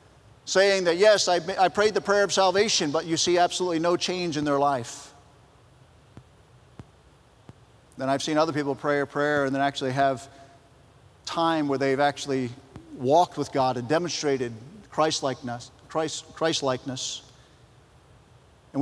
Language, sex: English, male